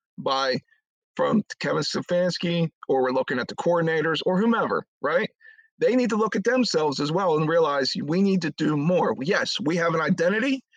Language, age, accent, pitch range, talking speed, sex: English, 40-59, American, 160-225 Hz, 185 wpm, male